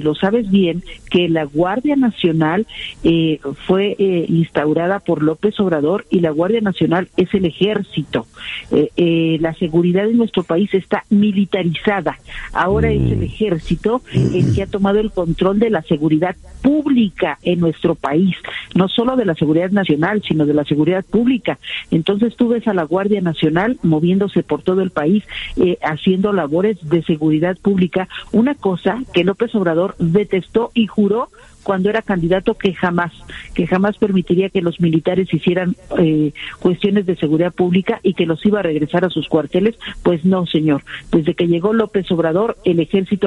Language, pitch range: Spanish, 165-205 Hz